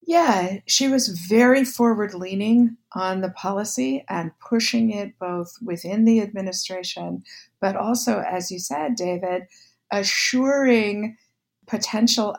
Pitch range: 175-235 Hz